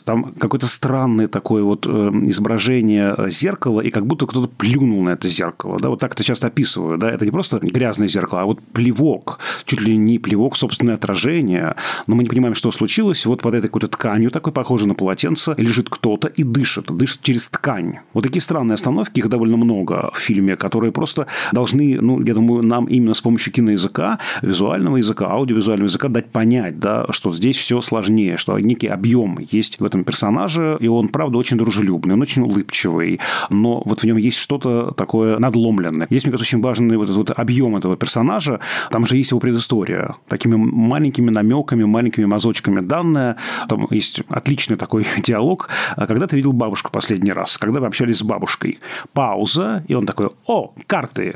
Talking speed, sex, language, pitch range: 180 wpm, male, Russian, 105-125 Hz